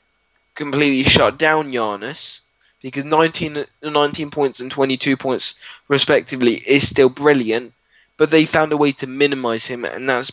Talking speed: 145 wpm